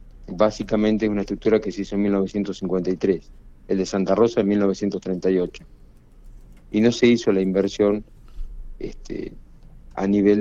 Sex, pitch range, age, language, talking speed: male, 90-105 Hz, 50-69, Spanish, 135 wpm